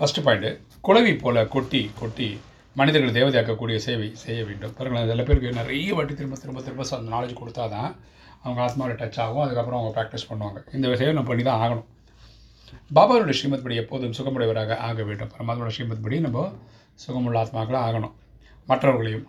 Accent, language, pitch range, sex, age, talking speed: native, Tamil, 115-130 Hz, male, 30-49, 155 wpm